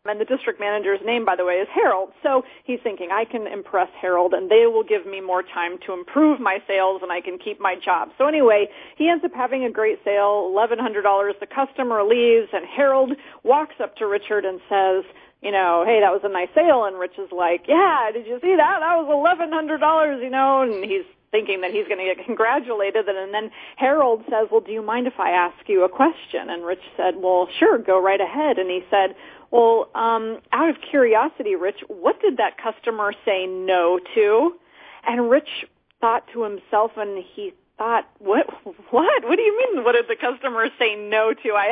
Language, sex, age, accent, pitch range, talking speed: English, female, 40-59, American, 200-275 Hz, 210 wpm